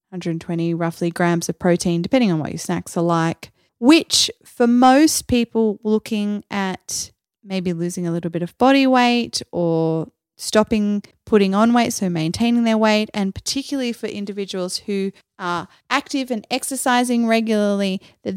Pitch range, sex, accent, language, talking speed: 180-220 Hz, female, Australian, English, 150 wpm